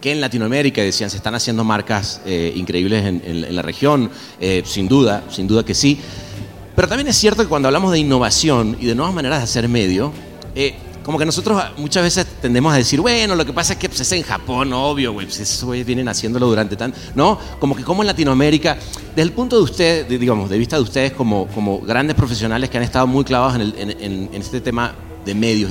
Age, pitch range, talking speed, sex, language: 30-49, 105-150 Hz, 235 wpm, male, Spanish